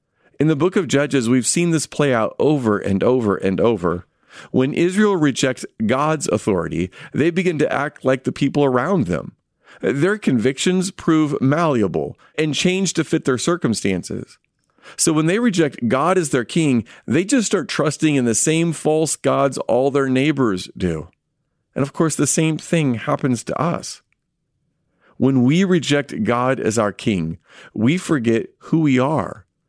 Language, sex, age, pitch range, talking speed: English, male, 40-59, 115-155 Hz, 165 wpm